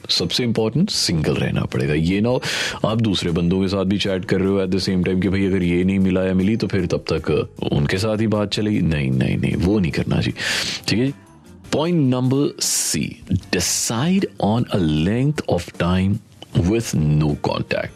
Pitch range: 85-115 Hz